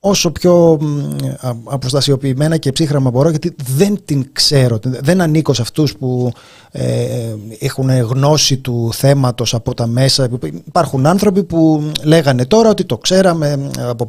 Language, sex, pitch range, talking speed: Greek, male, 125-165 Hz, 135 wpm